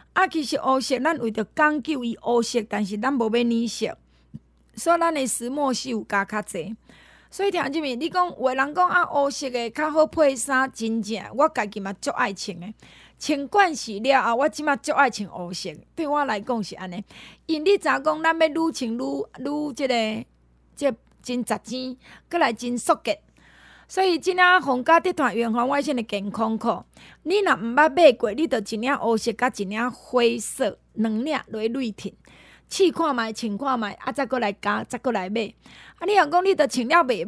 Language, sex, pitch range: Chinese, female, 225-305 Hz